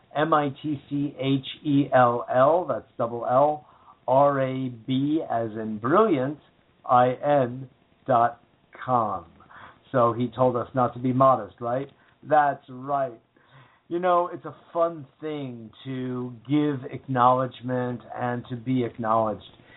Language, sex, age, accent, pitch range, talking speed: English, male, 50-69, American, 125-160 Hz, 105 wpm